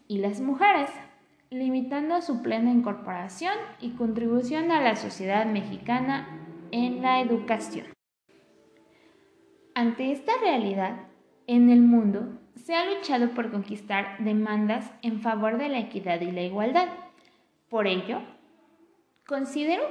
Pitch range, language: 200-295 Hz, Spanish